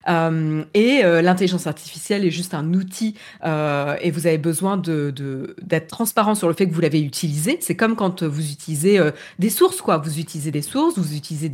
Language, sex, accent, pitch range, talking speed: French, female, French, 165-220 Hz, 210 wpm